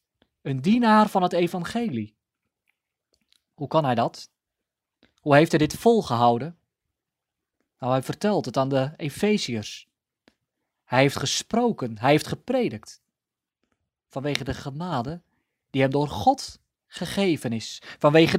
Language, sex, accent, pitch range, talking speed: Dutch, male, Dutch, 130-195 Hz, 120 wpm